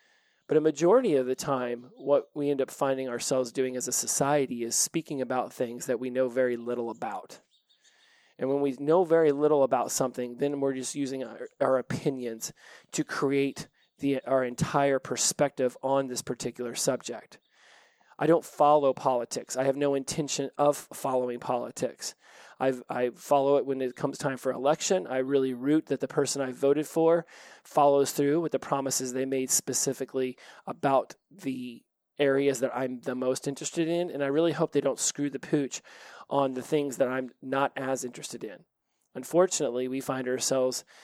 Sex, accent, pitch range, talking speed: male, American, 130-145 Hz, 175 wpm